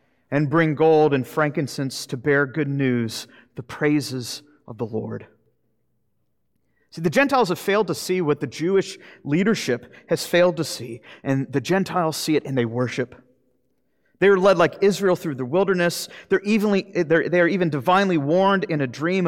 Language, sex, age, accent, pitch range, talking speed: English, male, 40-59, American, 125-185 Hz, 165 wpm